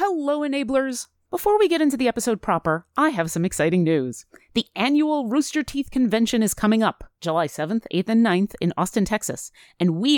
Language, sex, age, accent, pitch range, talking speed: English, female, 30-49, American, 185-275 Hz, 190 wpm